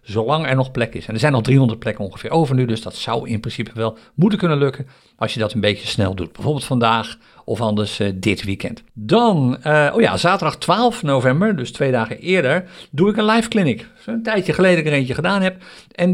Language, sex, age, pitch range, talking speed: Dutch, male, 50-69, 115-155 Hz, 230 wpm